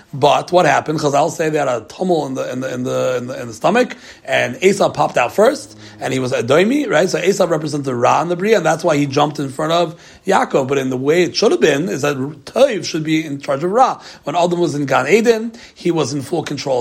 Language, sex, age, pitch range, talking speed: English, male, 30-49, 140-180 Hz, 275 wpm